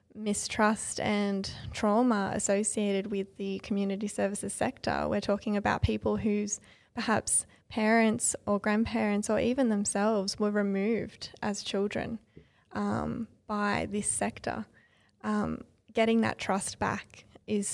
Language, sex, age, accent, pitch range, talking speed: English, female, 20-39, Australian, 195-220 Hz, 120 wpm